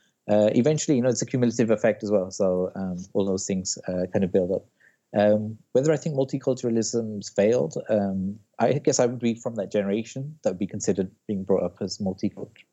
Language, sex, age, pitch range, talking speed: English, male, 30-49, 95-110 Hz, 205 wpm